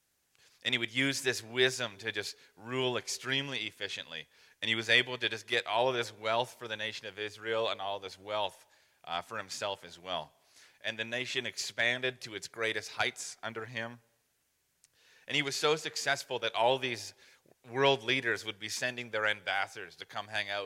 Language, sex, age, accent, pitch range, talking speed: English, male, 30-49, American, 110-135 Hz, 190 wpm